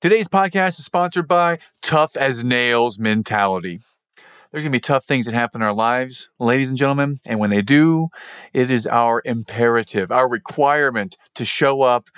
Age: 40-59